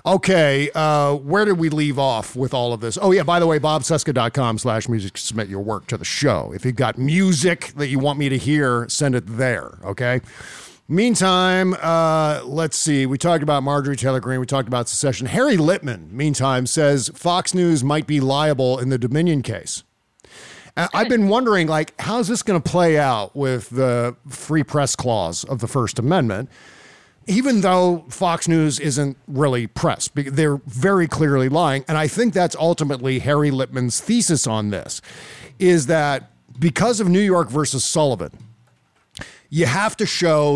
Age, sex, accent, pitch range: 50-69, male, American, 130-165 Hz